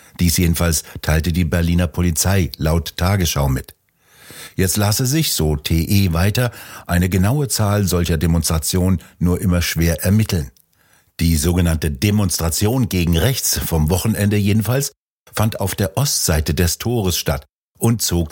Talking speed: 135 wpm